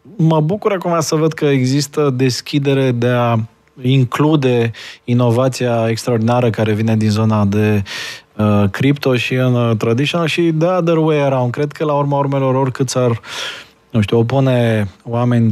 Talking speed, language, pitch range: 140 wpm, Romanian, 110-135 Hz